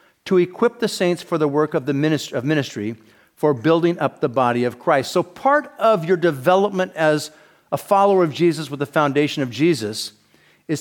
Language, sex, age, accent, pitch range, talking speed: English, male, 50-69, American, 145-195 Hz, 195 wpm